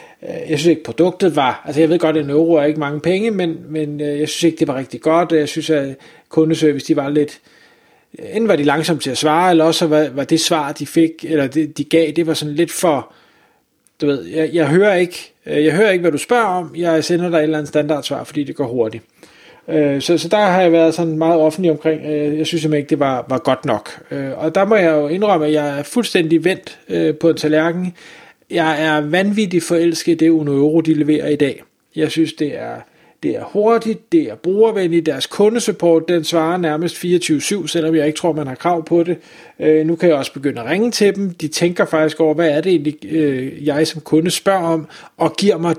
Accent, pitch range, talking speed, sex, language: native, 150-175 Hz, 225 wpm, male, Danish